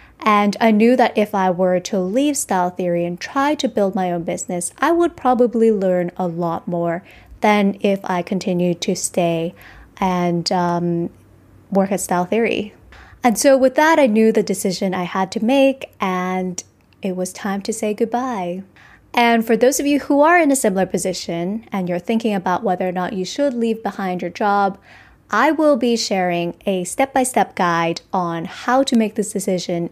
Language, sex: English, female